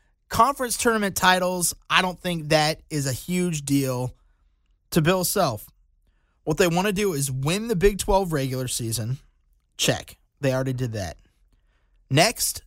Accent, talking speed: American, 150 wpm